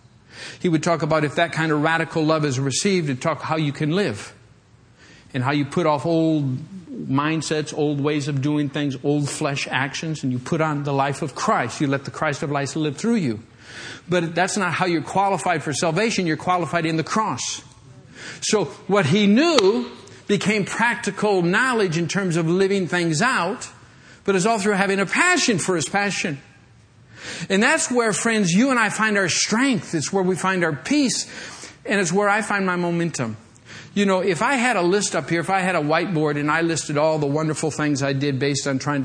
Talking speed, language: 205 wpm, English